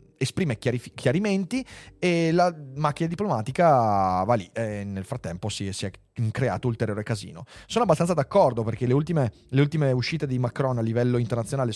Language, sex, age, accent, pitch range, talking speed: Italian, male, 30-49, native, 110-140 Hz, 155 wpm